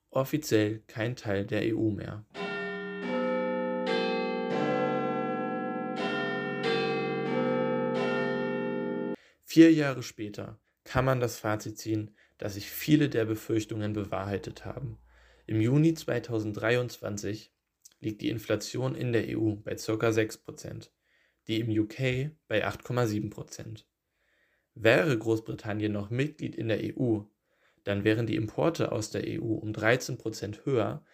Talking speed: 105 wpm